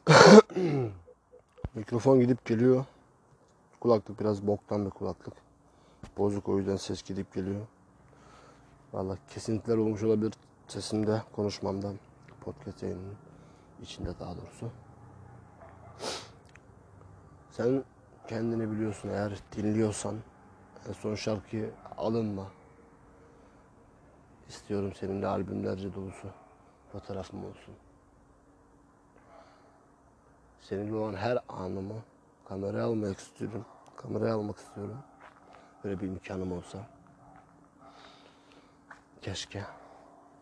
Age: 40-59